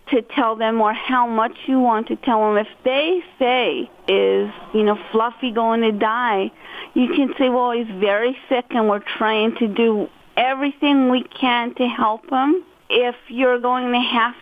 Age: 40-59